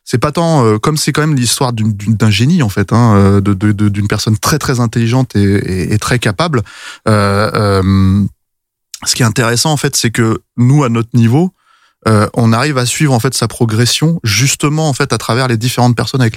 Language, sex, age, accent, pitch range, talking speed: French, male, 20-39, French, 105-130 Hz, 225 wpm